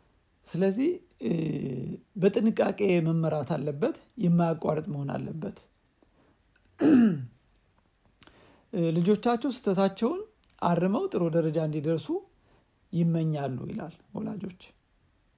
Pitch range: 155-205 Hz